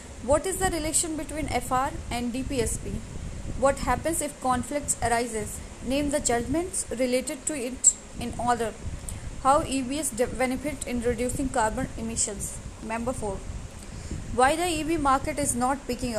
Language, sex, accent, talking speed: English, female, Indian, 140 wpm